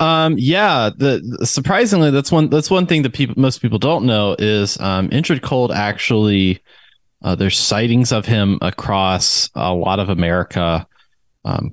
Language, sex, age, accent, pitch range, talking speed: English, male, 30-49, American, 90-120 Hz, 160 wpm